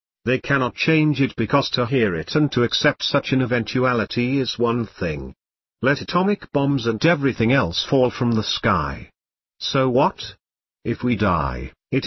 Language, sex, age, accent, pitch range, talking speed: English, male, 50-69, British, 105-145 Hz, 165 wpm